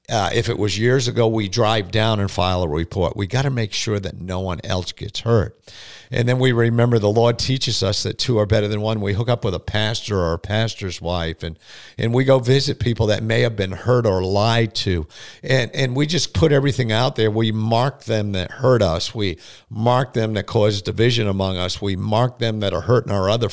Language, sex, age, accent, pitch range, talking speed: English, male, 50-69, American, 100-120 Hz, 235 wpm